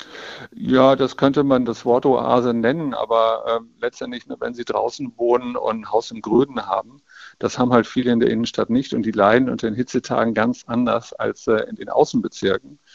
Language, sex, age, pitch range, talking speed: German, male, 50-69, 115-130 Hz, 200 wpm